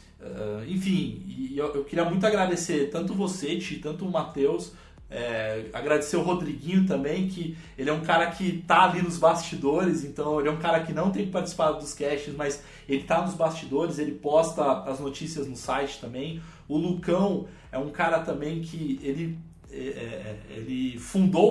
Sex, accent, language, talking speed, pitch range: male, Brazilian, Portuguese, 160 wpm, 145-175 Hz